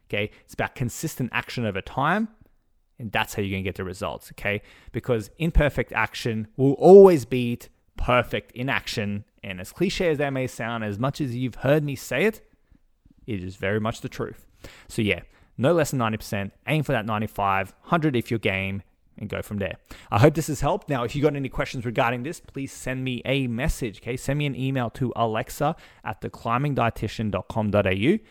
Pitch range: 105-135 Hz